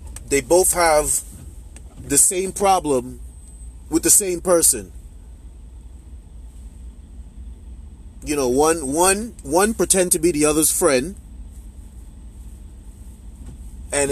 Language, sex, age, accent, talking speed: English, male, 30-49, American, 95 wpm